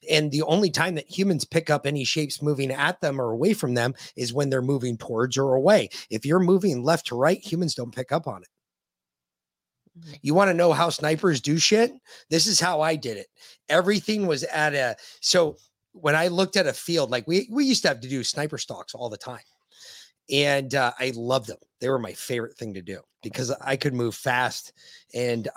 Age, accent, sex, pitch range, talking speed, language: 30-49, American, male, 125-170 Hz, 215 wpm, English